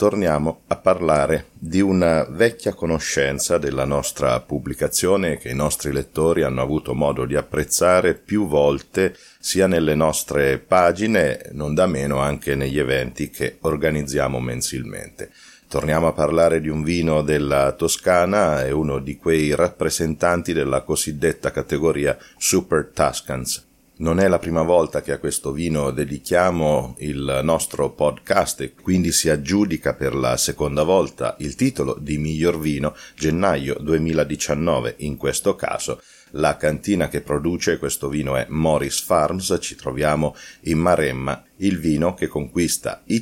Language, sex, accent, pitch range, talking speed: Italian, male, native, 70-85 Hz, 140 wpm